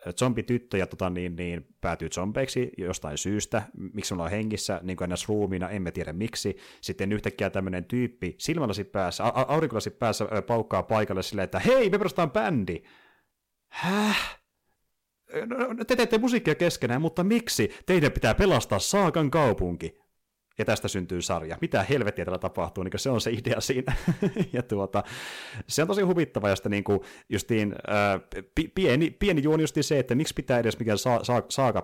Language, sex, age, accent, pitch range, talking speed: Finnish, male, 30-49, native, 95-120 Hz, 155 wpm